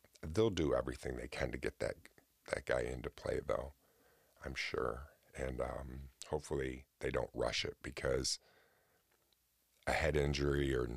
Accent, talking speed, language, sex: American, 150 wpm, English, male